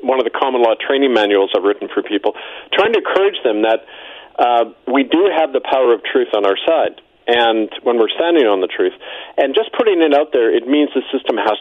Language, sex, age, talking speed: English, male, 40-59, 235 wpm